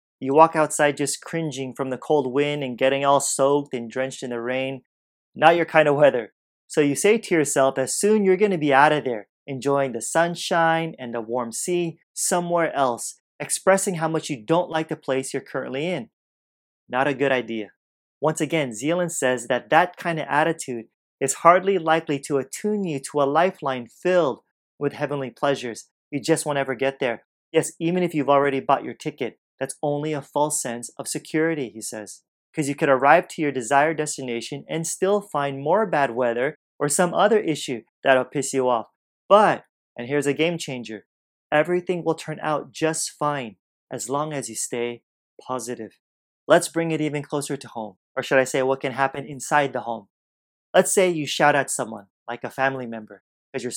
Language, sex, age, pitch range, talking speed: English, male, 30-49, 125-160 Hz, 195 wpm